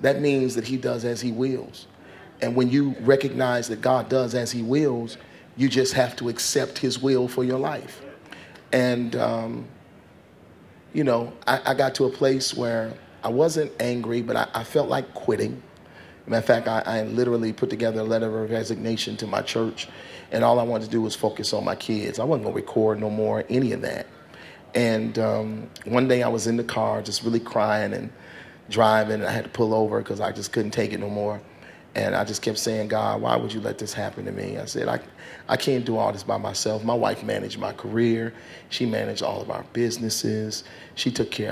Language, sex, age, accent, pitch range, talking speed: English, male, 40-59, American, 110-130 Hz, 215 wpm